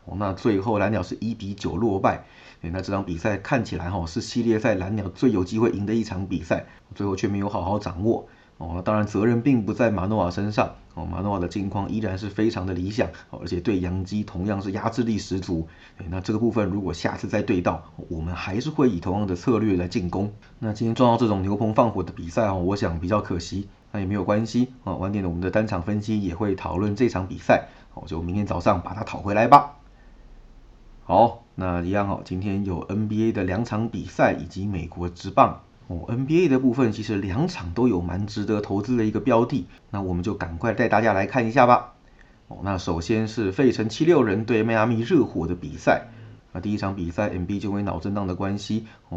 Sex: male